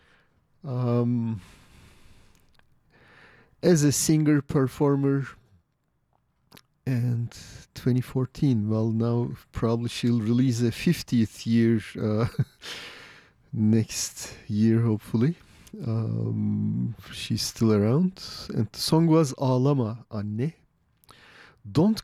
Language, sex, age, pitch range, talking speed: English, male, 50-69, 105-130 Hz, 80 wpm